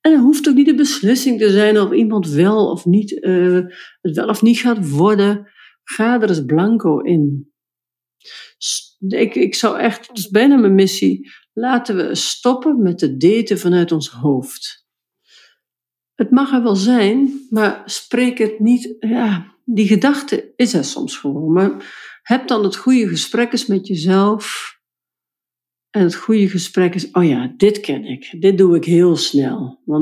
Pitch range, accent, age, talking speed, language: 165-235 Hz, Dutch, 50-69, 170 wpm, Dutch